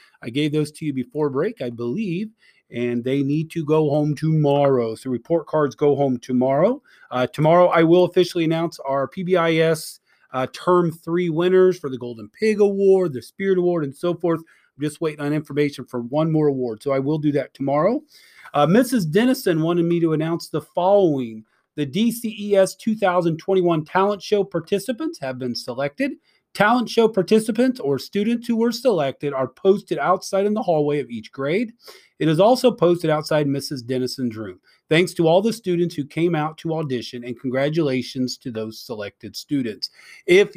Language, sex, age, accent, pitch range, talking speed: English, male, 30-49, American, 135-195 Hz, 180 wpm